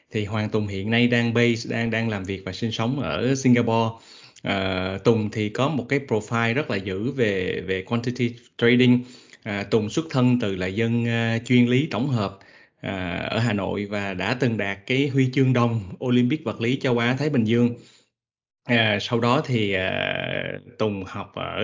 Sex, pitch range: male, 105-125 Hz